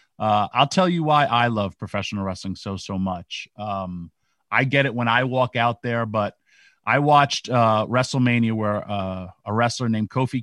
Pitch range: 105-130 Hz